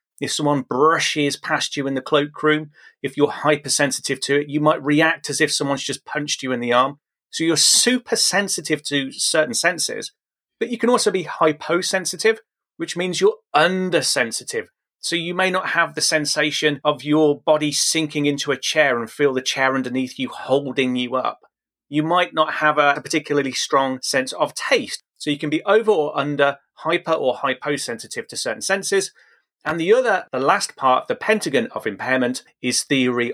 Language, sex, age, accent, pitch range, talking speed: English, male, 30-49, British, 135-170 Hz, 180 wpm